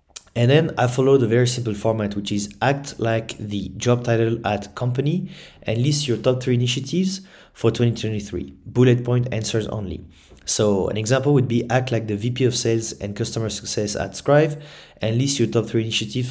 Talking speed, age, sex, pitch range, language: 190 wpm, 30-49, male, 110-135 Hz, English